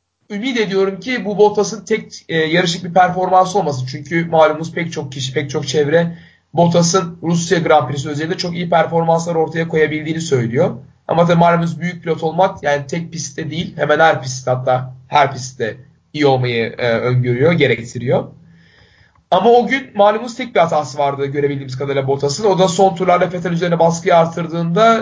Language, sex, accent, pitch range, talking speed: Turkish, male, native, 145-185 Hz, 170 wpm